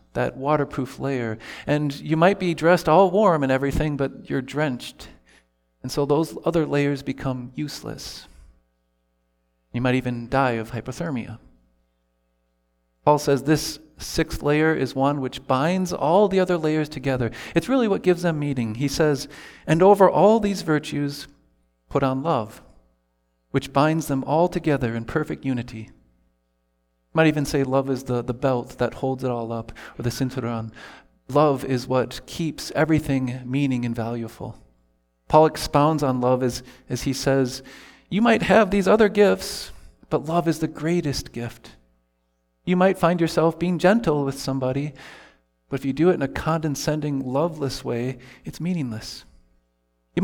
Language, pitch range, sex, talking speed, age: English, 115-155 Hz, male, 155 wpm, 40-59